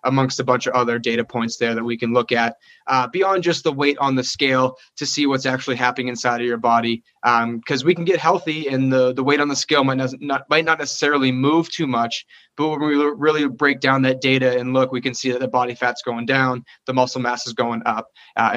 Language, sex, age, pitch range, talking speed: English, male, 20-39, 130-150 Hz, 250 wpm